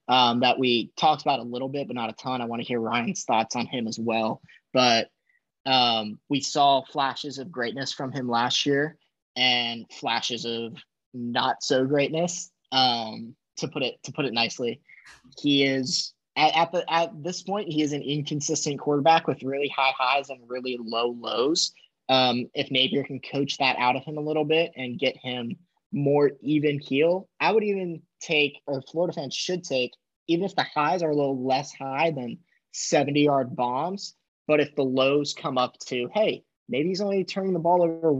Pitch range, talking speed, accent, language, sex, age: 125-150 Hz, 190 wpm, American, English, male, 20-39